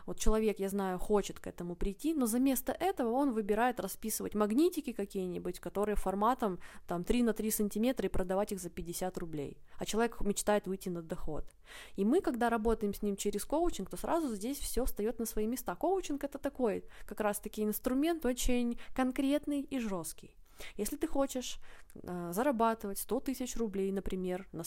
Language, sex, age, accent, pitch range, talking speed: Russian, female, 20-39, native, 185-240 Hz, 180 wpm